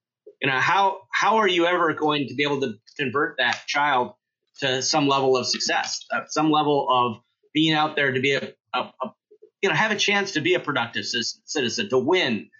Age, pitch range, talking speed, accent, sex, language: 30-49, 135-190 Hz, 210 wpm, American, male, English